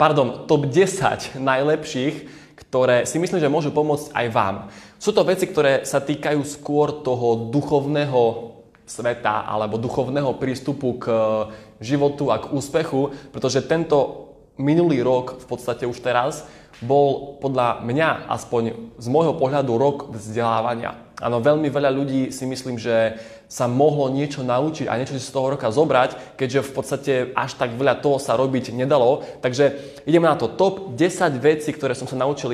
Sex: male